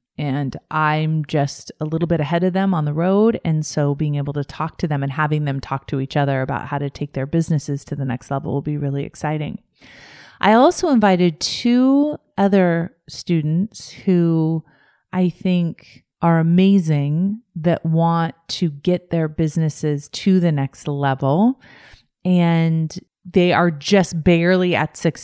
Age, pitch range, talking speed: 30-49, 140-170 Hz, 165 wpm